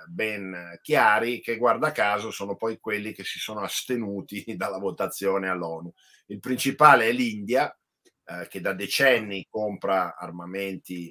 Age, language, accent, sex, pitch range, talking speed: 50-69, Italian, native, male, 90-105 Hz, 135 wpm